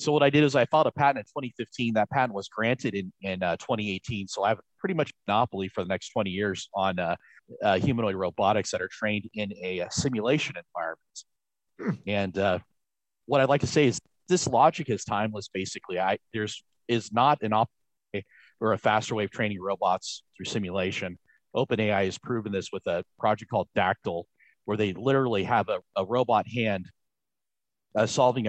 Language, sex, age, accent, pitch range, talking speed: English, male, 40-59, American, 95-120 Hz, 190 wpm